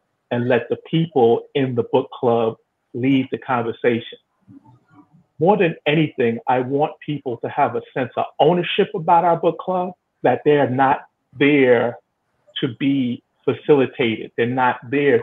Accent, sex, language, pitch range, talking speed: American, male, English, 125-170 Hz, 145 wpm